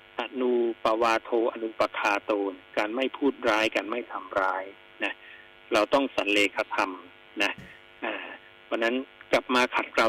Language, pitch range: Thai, 105-170 Hz